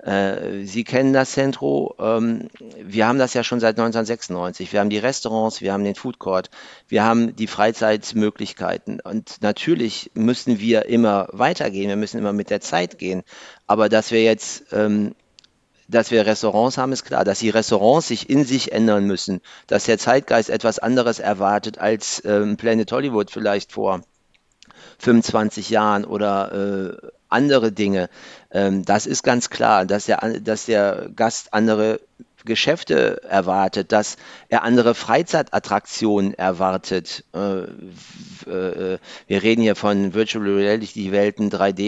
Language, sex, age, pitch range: German, male, 40-59, 100-115 Hz